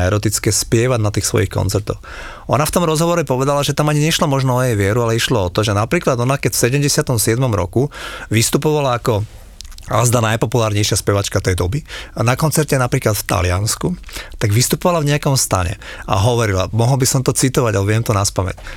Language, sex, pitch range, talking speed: Slovak, male, 110-145 Hz, 195 wpm